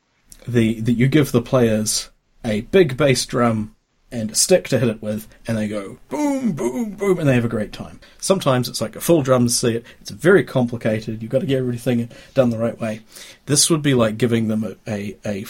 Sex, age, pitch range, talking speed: male, 40-59, 110-120 Hz, 215 wpm